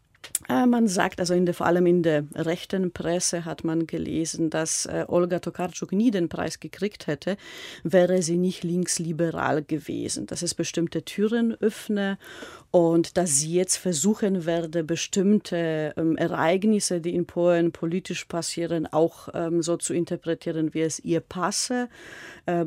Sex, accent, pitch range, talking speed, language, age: female, German, 160-180 Hz, 150 wpm, German, 40-59